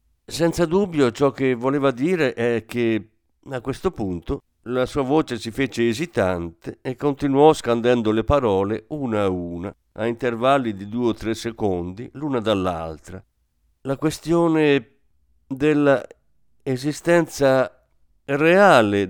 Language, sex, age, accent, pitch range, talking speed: Italian, male, 50-69, native, 95-135 Hz, 120 wpm